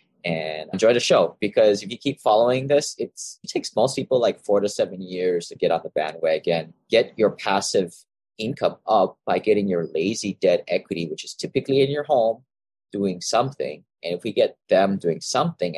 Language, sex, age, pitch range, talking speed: English, male, 30-49, 95-150 Hz, 190 wpm